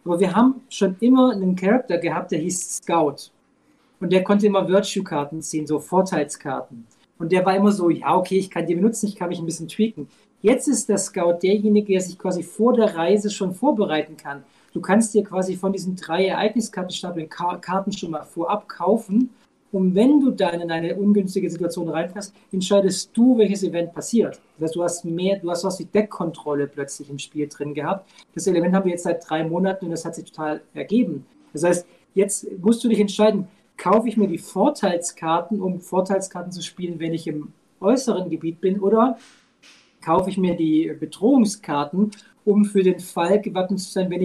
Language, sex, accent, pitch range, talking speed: German, male, German, 170-210 Hz, 190 wpm